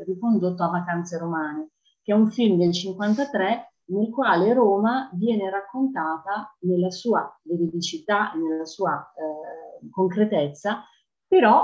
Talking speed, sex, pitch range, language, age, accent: 120 wpm, female, 165-215 Hz, Italian, 30-49, native